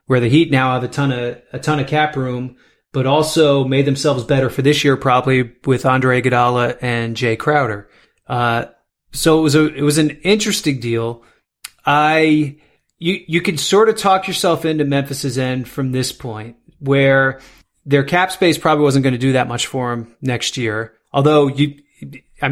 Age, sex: 30-49, male